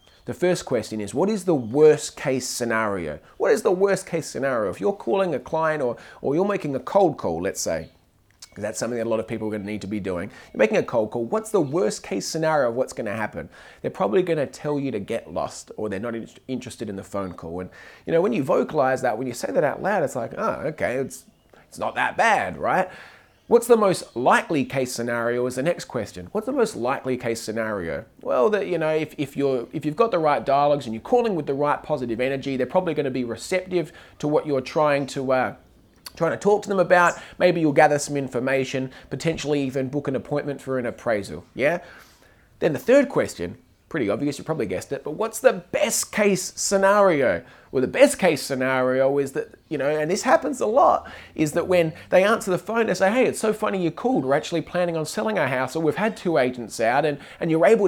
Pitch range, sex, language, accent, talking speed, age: 125-180 Hz, male, English, Australian, 235 wpm, 30-49